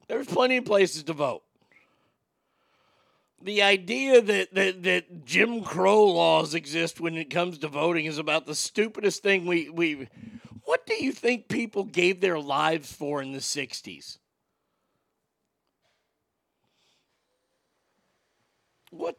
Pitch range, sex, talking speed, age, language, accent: 145-185 Hz, male, 125 wpm, 50-69, English, American